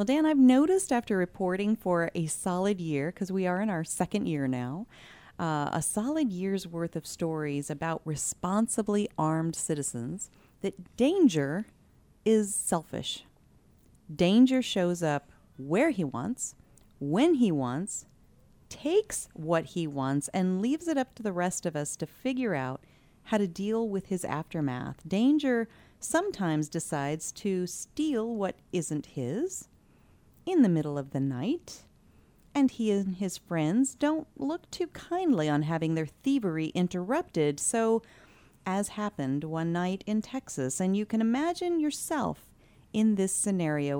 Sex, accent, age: female, American, 30-49